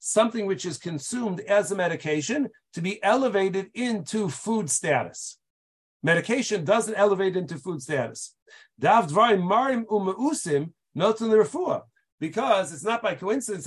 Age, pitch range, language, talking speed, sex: 40-59, 160-210 Hz, English, 105 wpm, male